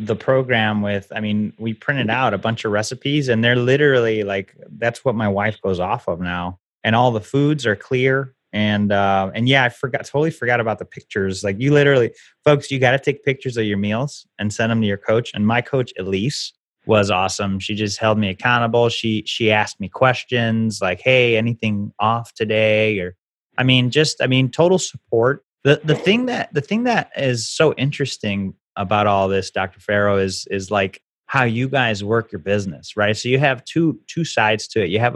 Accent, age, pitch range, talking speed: American, 30-49, 105-130 Hz, 210 wpm